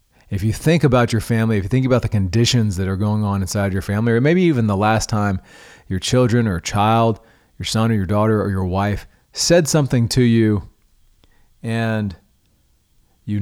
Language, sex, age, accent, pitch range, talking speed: English, male, 40-59, American, 90-125 Hz, 190 wpm